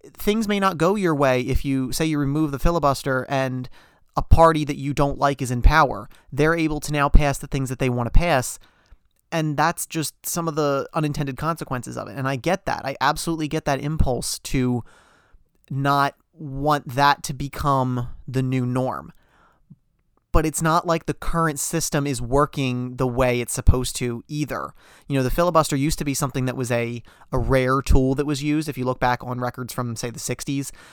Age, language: 30-49, English